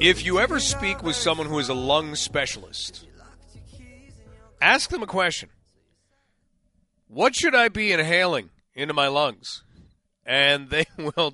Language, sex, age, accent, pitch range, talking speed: English, male, 30-49, American, 140-185 Hz, 140 wpm